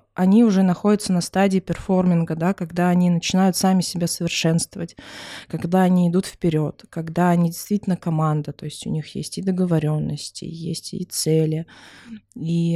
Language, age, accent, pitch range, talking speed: Russian, 20-39, native, 160-195 Hz, 150 wpm